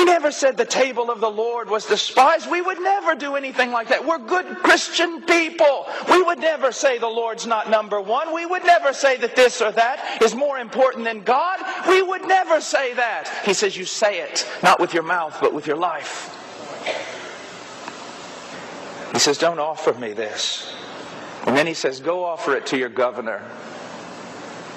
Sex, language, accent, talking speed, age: male, English, American, 185 wpm, 50-69